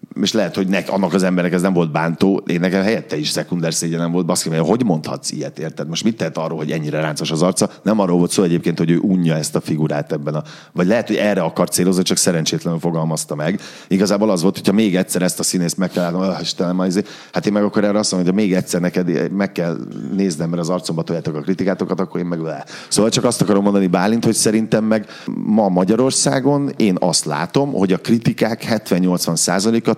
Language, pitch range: Hungarian, 80-100 Hz